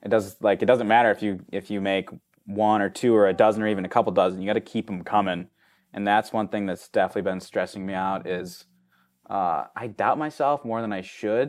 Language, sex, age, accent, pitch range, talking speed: English, male, 20-39, American, 95-110 Hz, 245 wpm